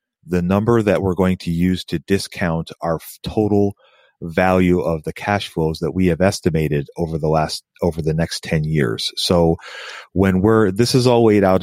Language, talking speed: English, 185 wpm